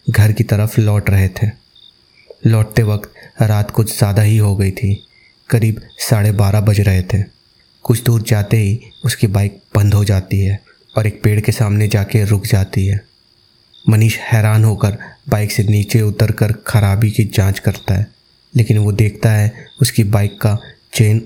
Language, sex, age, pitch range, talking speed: Hindi, male, 20-39, 105-115 Hz, 170 wpm